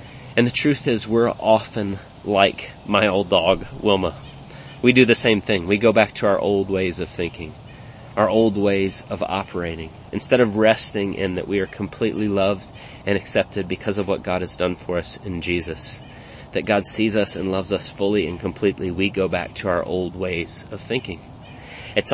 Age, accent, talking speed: 30-49, American, 190 wpm